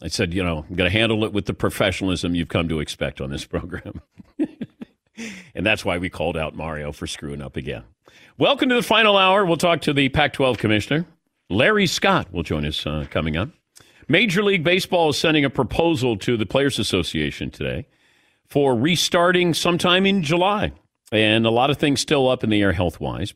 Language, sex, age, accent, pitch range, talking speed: English, male, 50-69, American, 100-160 Hz, 200 wpm